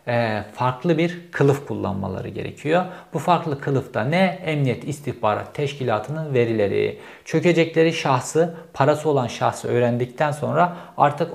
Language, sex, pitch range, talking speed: Turkish, male, 120-160 Hz, 110 wpm